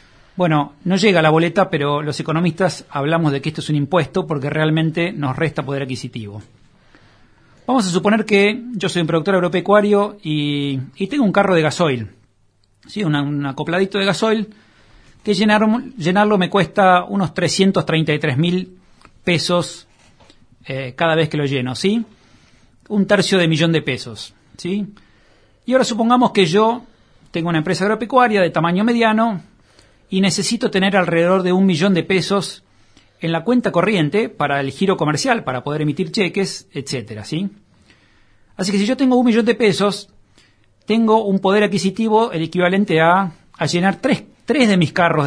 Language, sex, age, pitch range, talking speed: Spanish, male, 40-59, 145-200 Hz, 165 wpm